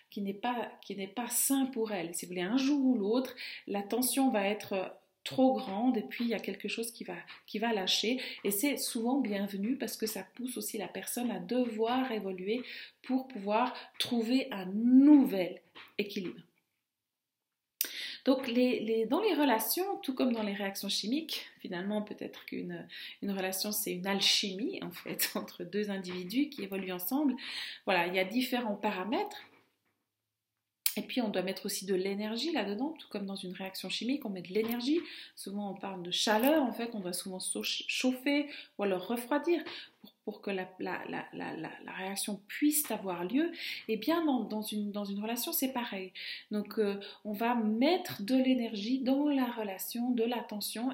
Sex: female